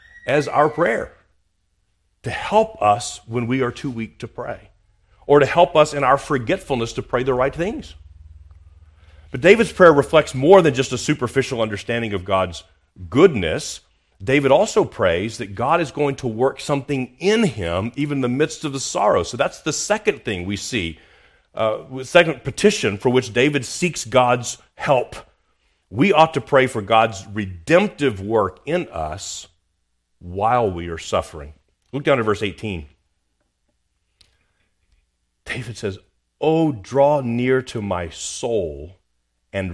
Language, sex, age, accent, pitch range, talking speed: English, male, 40-59, American, 90-135 Hz, 155 wpm